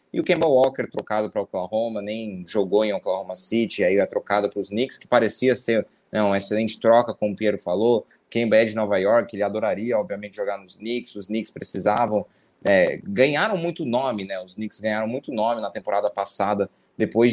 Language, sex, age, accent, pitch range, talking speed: English, male, 20-39, Brazilian, 105-120 Hz, 195 wpm